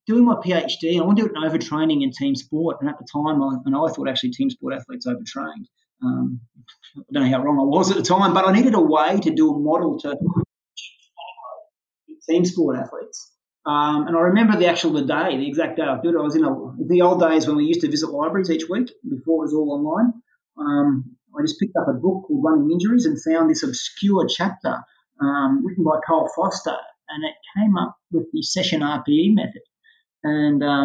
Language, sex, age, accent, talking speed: English, male, 30-49, Australian, 215 wpm